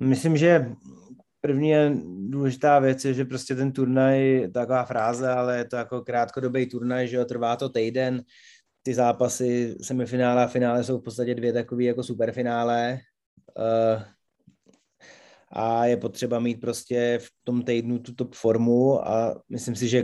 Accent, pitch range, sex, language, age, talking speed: native, 115-130 Hz, male, Czech, 20-39, 150 wpm